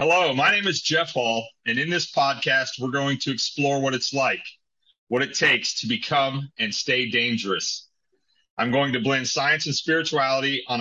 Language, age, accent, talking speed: English, 40-59, American, 185 wpm